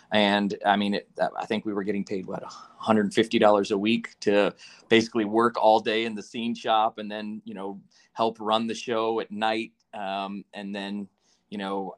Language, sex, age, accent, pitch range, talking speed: English, male, 30-49, American, 105-120 Hz, 190 wpm